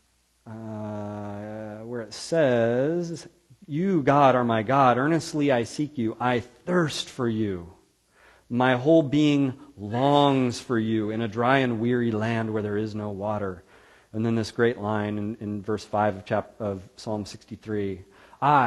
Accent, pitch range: American, 105-140 Hz